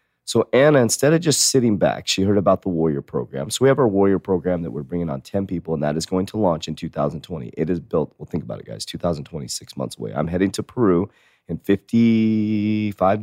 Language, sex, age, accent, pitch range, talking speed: English, male, 30-49, American, 80-105 Hz, 230 wpm